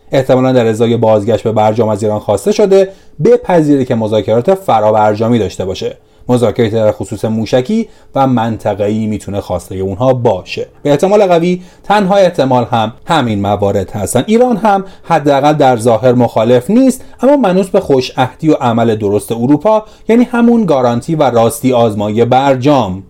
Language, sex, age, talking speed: Persian, male, 30-49, 160 wpm